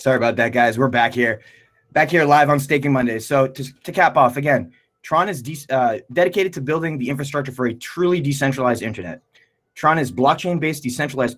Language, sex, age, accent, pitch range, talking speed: English, male, 20-39, American, 125-155 Hz, 190 wpm